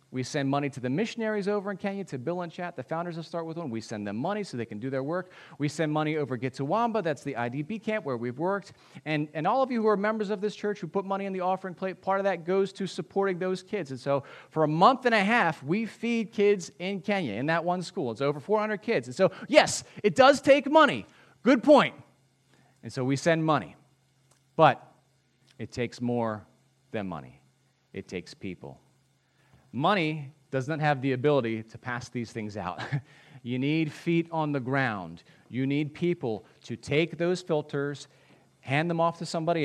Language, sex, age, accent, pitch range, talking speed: English, male, 40-59, American, 125-180 Hz, 210 wpm